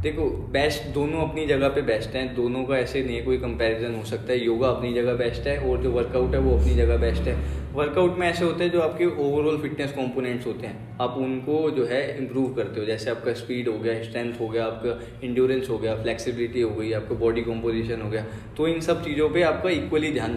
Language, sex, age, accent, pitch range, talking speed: Hindi, male, 10-29, native, 115-140 Hz, 230 wpm